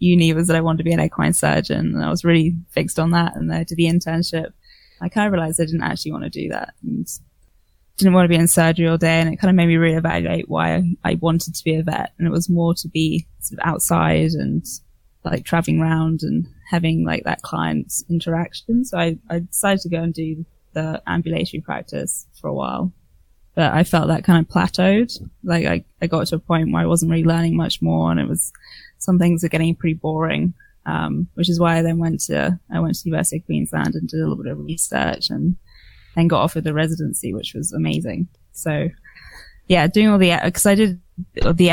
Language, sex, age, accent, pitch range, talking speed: English, female, 20-39, British, 160-175 Hz, 230 wpm